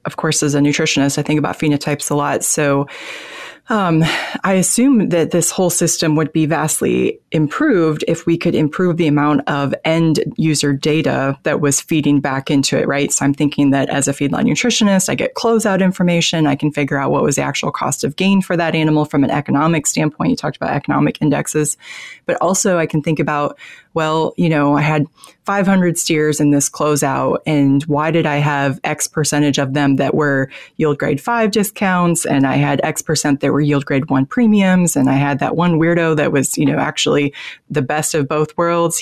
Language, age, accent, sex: English, 20-39, American, female